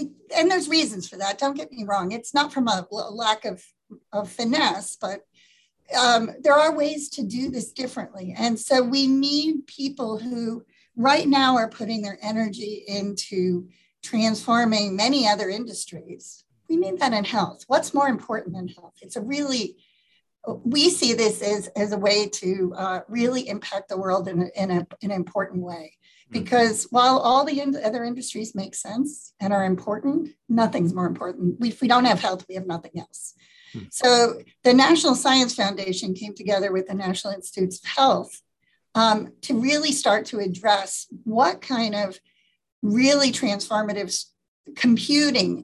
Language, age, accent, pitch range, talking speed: English, 40-59, American, 200-265 Hz, 165 wpm